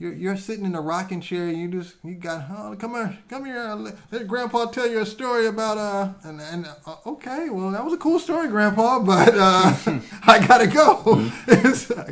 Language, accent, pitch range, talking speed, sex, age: English, American, 145-195 Hz, 210 wpm, male, 30-49